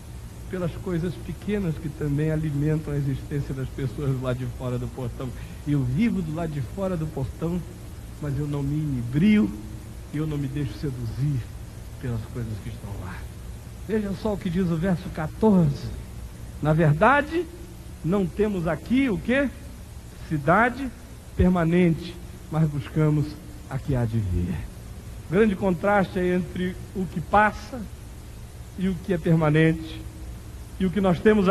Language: Portuguese